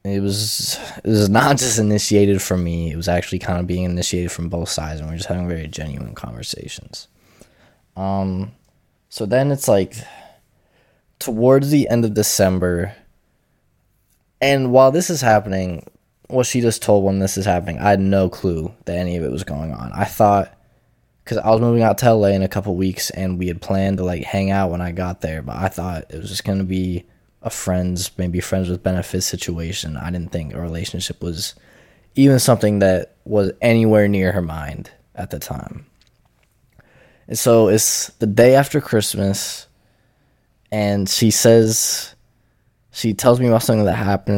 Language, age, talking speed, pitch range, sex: English, 20-39, 185 wpm, 90-115 Hz, male